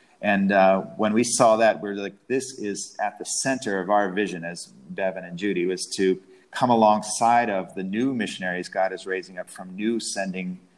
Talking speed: 195 wpm